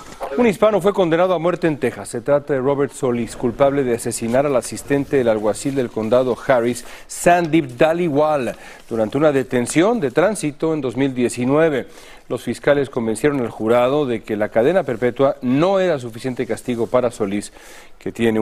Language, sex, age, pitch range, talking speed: Spanish, male, 40-59, 115-160 Hz, 165 wpm